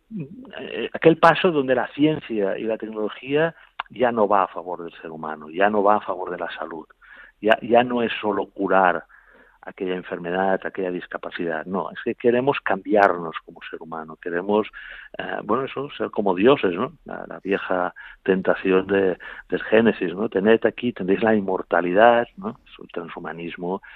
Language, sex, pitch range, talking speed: Spanish, male, 95-120 Hz, 165 wpm